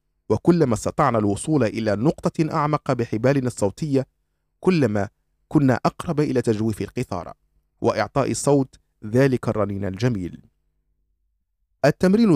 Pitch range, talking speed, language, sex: 90-150 Hz, 95 wpm, Arabic, male